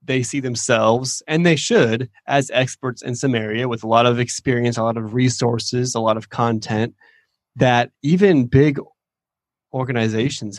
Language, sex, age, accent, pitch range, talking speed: English, male, 20-39, American, 115-135 Hz, 160 wpm